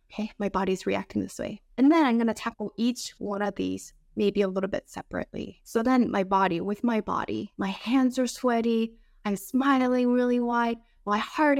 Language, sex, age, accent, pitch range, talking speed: English, female, 20-39, American, 195-255 Hz, 190 wpm